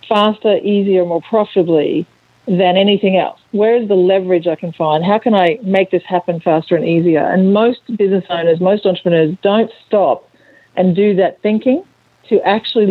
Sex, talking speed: female, 170 wpm